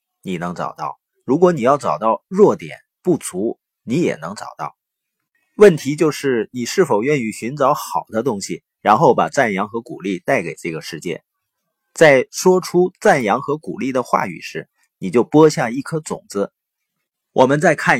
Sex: male